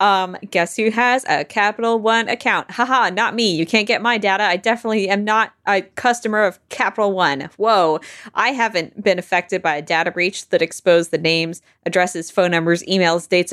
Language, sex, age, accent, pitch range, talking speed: English, female, 20-39, American, 170-225 Hz, 195 wpm